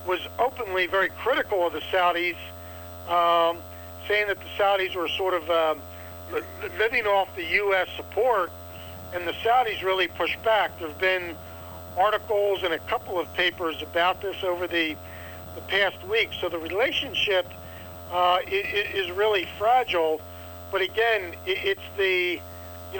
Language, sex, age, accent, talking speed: English, male, 60-79, American, 145 wpm